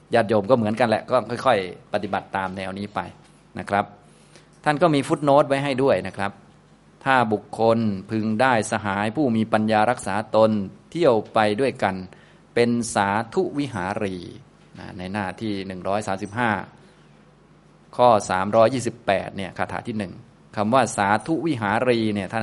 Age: 20-39